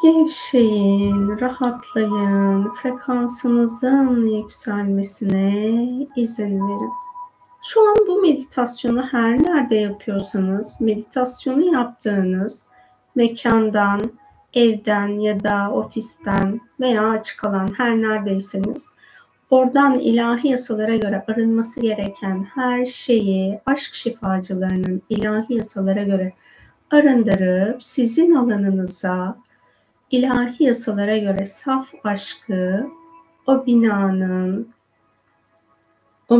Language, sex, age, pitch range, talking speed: Turkish, female, 30-49, 200-255 Hz, 80 wpm